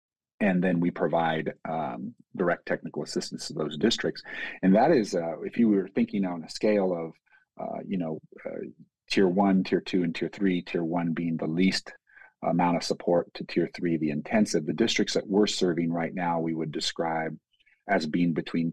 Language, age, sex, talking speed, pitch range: English, 40-59, male, 190 wpm, 85-95 Hz